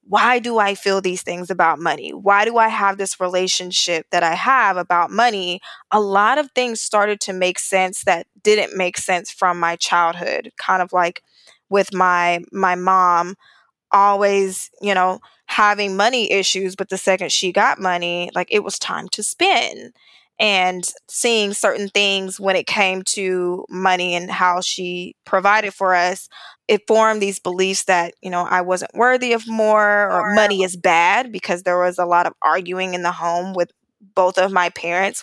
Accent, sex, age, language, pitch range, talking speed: American, female, 10-29, English, 180-205 Hz, 180 wpm